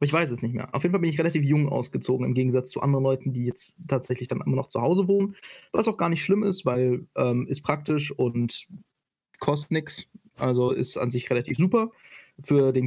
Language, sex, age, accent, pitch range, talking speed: German, male, 20-39, German, 125-140 Hz, 225 wpm